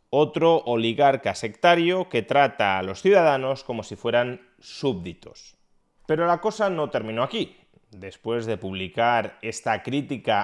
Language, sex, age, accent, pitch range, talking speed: Spanish, male, 30-49, Spanish, 110-155 Hz, 130 wpm